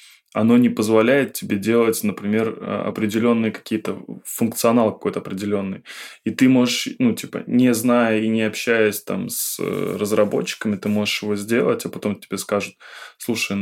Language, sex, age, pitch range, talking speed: Russian, male, 20-39, 100-115 Hz, 145 wpm